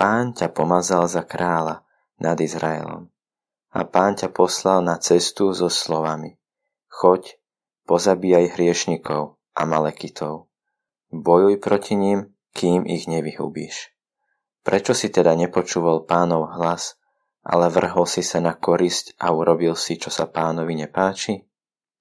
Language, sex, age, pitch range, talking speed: Slovak, male, 20-39, 80-95 Hz, 125 wpm